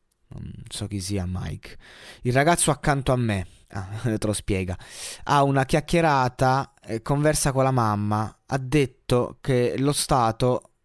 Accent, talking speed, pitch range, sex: native, 140 wpm, 105-135 Hz, male